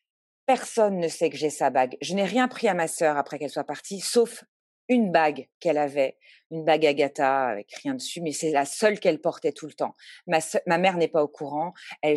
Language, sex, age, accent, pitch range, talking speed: French, female, 40-59, French, 150-200 Hz, 230 wpm